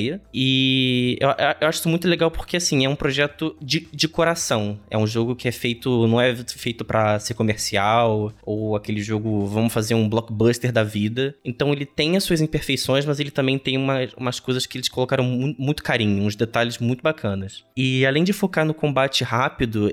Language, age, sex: Portuguese, 20-39, male